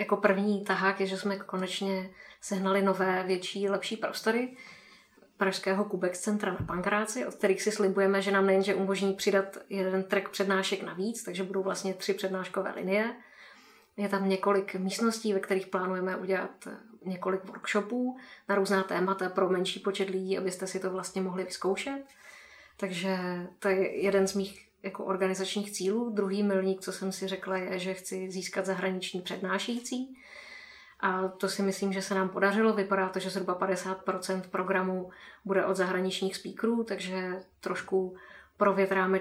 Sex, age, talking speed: female, 20-39, 155 wpm